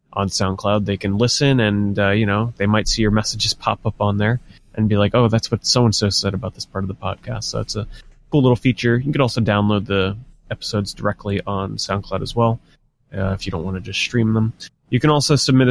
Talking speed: 235 wpm